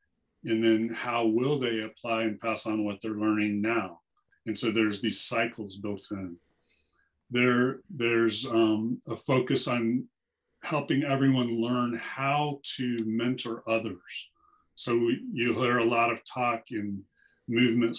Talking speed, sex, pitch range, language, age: 145 wpm, male, 110-125 Hz, English, 30-49